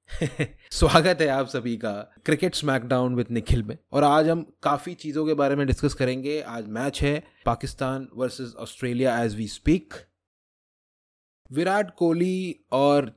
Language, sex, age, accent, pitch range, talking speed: Hindi, male, 30-49, native, 125-165 Hz, 145 wpm